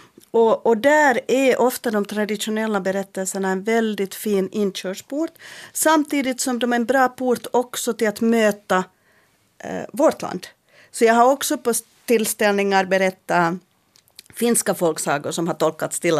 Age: 40-59